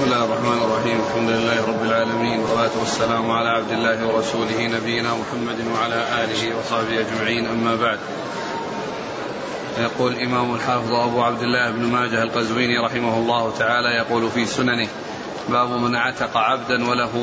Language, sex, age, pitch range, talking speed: Arabic, male, 30-49, 115-130 Hz, 145 wpm